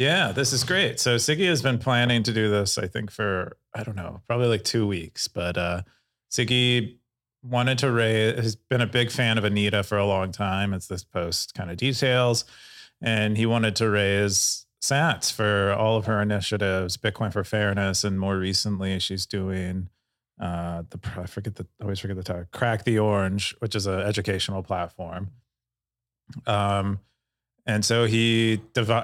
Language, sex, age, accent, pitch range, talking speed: English, male, 30-49, American, 100-120 Hz, 180 wpm